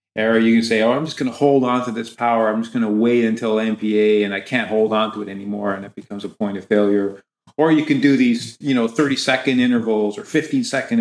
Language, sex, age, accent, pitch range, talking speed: English, male, 40-59, American, 105-140 Hz, 255 wpm